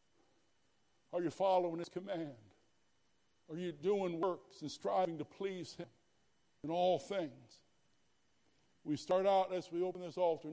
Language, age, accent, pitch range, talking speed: English, 60-79, American, 160-195 Hz, 140 wpm